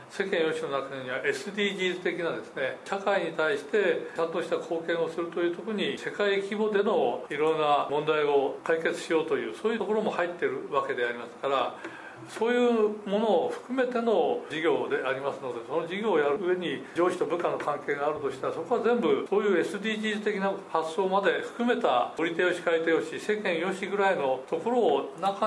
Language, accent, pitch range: Japanese, native, 170-250 Hz